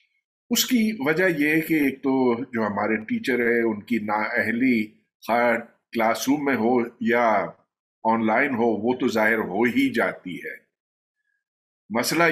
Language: Urdu